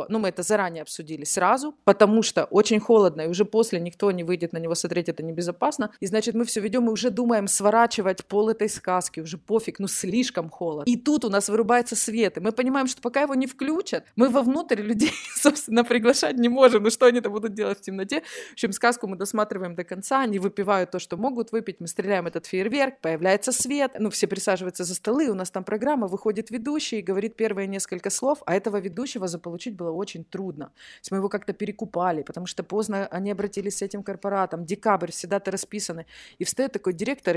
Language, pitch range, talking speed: Russian, 180-235 Hz, 210 wpm